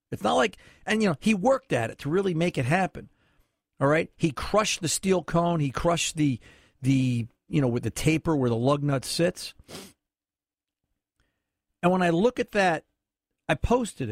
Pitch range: 125-170 Hz